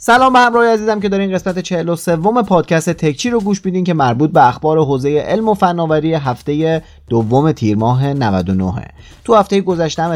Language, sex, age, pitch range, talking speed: Persian, male, 30-49, 110-175 Hz, 170 wpm